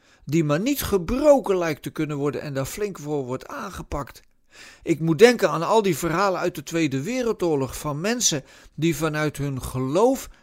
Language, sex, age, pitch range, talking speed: Dutch, male, 50-69, 140-200 Hz, 180 wpm